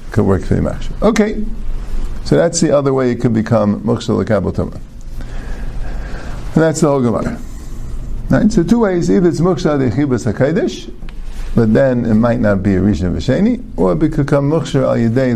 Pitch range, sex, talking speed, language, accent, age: 110-155 Hz, male, 175 wpm, English, American, 50-69